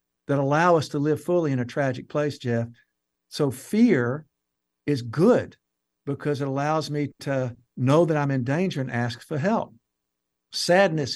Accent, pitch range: American, 120-155 Hz